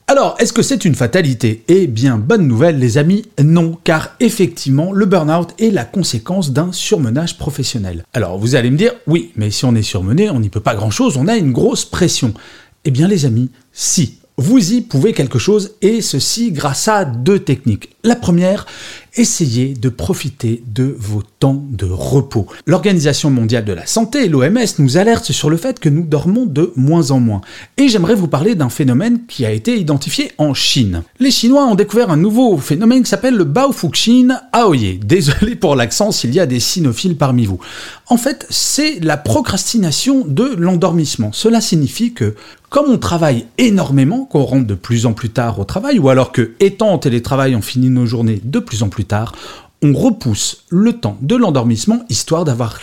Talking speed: 190 wpm